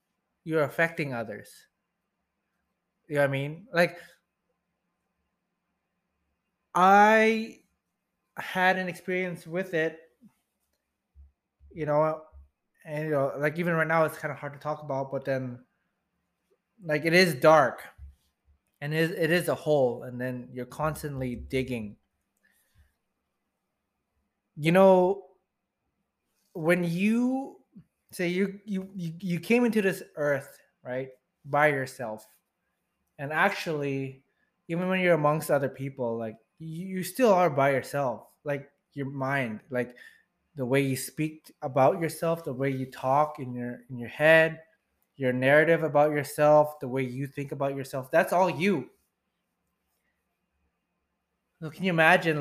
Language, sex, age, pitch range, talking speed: English, male, 20-39, 130-175 Hz, 130 wpm